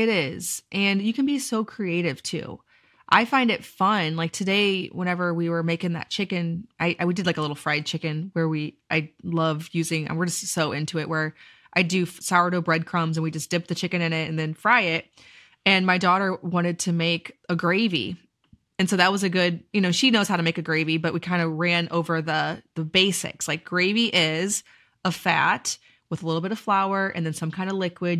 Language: English